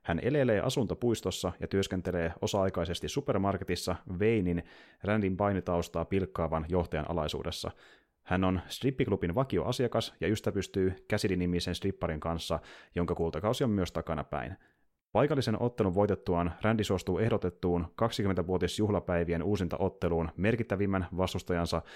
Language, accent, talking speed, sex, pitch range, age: Finnish, native, 110 wpm, male, 85-105 Hz, 30-49